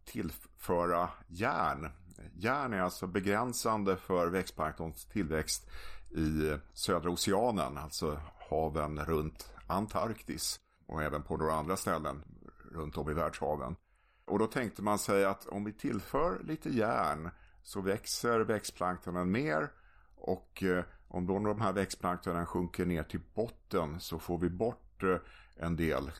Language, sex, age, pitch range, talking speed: Swedish, male, 50-69, 85-100 Hz, 130 wpm